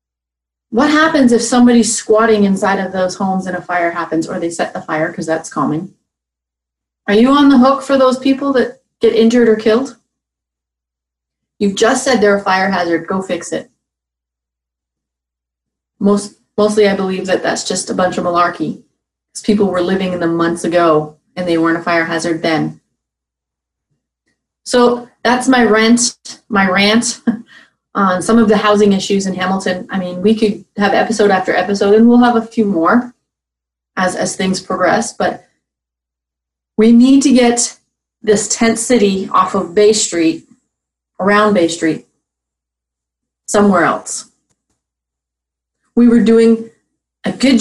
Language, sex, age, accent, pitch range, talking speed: English, female, 30-49, American, 150-225 Hz, 155 wpm